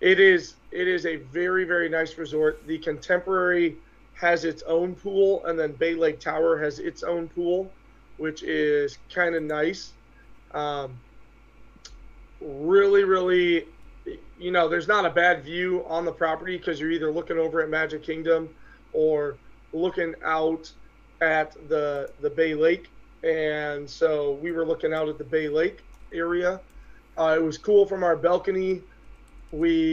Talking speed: 155 wpm